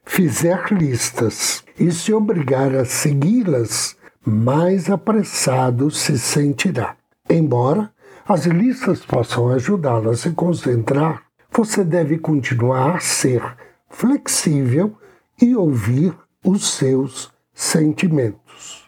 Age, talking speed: 60-79, 95 wpm